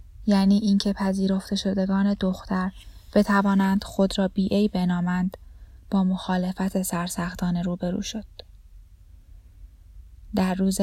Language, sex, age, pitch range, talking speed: Persian, female, 10-29, 175-190 Hz, 100 wpm